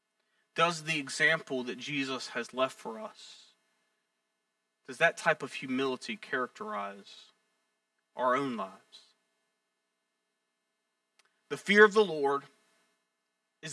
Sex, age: male, 40-59